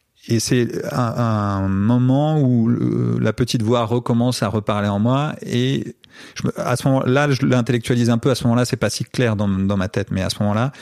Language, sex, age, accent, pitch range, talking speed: French, male, 30-49, French, 100-125 Hz, 210 wpm